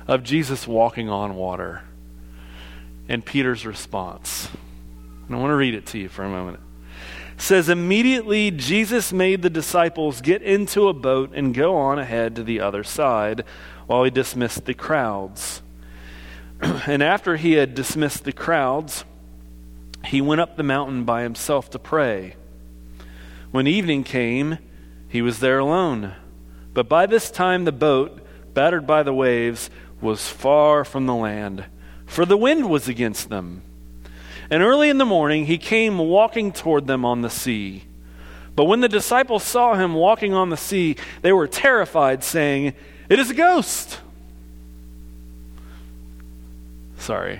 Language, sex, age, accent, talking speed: English, male, 40-59, American, 150 wpm